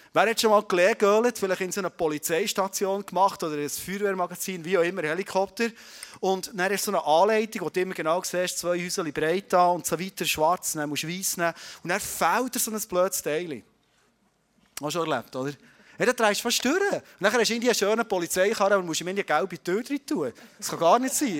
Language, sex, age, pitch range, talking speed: German, male, 30-49, 165-225 Hz, 225 wpm